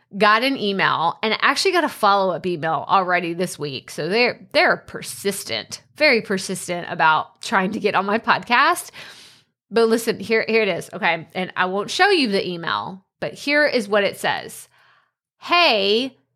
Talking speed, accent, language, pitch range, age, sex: 170 wpm, American, English, 190-275 Hz, 30-49, female